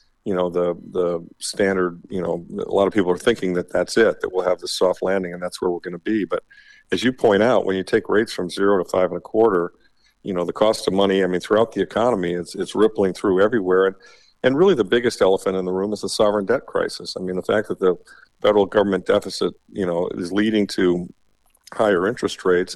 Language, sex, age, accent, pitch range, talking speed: English, male, 50-69, American, 90-105 Hz, 245 wpm